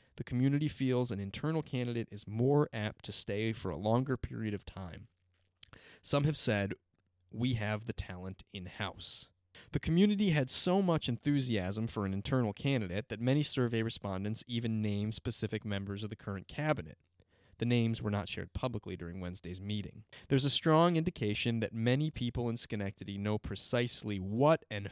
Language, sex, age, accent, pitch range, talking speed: English, male, 20-39, American, 100-130 Hz, 165 wpm